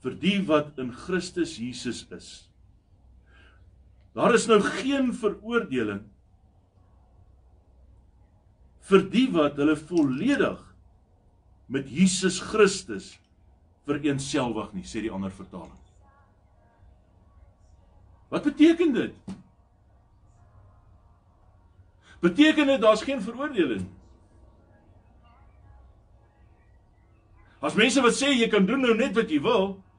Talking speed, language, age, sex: 95 wpm, English, 60-79, male